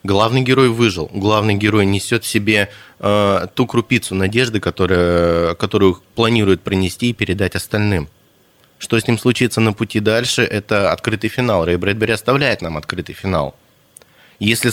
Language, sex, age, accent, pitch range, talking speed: Russian, male, 20-39, native, 95-115 Hz, 145 wpm